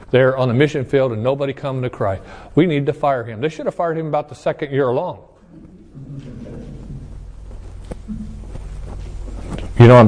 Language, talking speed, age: English, 165 wpm, 40-59